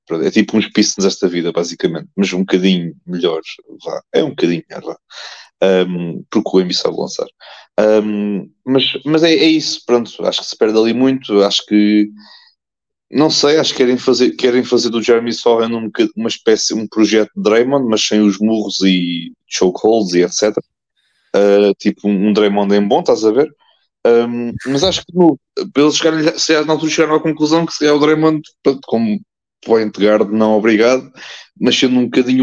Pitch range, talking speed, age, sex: 100-130 Hz, 175 wpm, 20-39, male